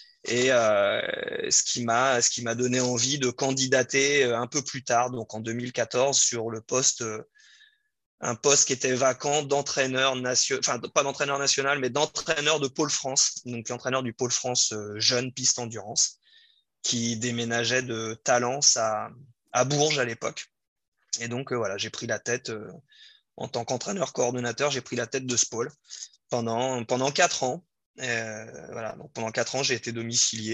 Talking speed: 170 wpm